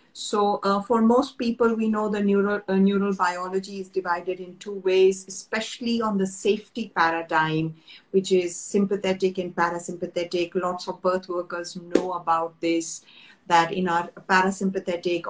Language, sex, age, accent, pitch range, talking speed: English, female, 50-69, Indian, 175-220 Hz, 150 wpm